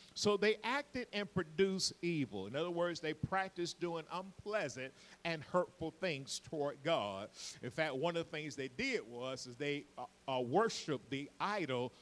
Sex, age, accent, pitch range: male, 50-69, American, 135-185 Hz